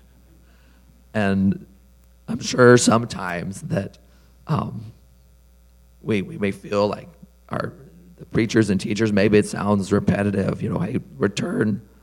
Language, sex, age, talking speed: English, male, 40-59, 115 wpm